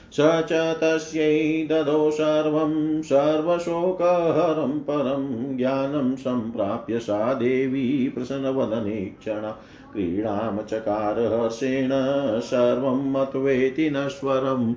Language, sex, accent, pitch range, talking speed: Hindi, male, native, 110-145 Hz, 55 wpm